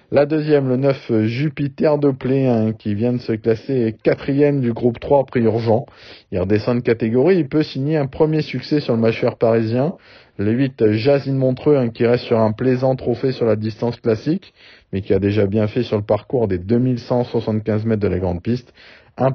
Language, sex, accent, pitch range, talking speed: French, male, French, 110-135 Hz, 200 wpm